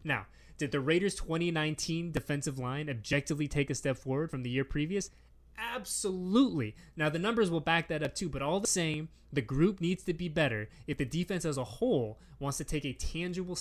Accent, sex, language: American, male, English